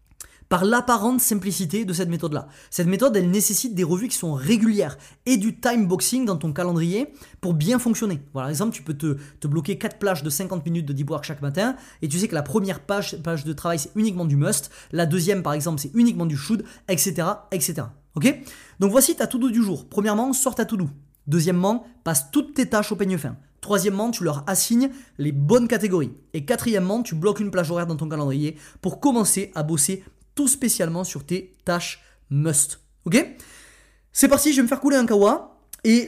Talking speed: 210 wpm